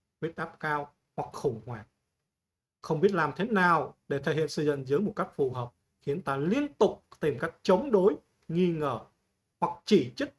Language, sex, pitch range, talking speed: Vietnamese, male, 135-180 Hz, 195 wpm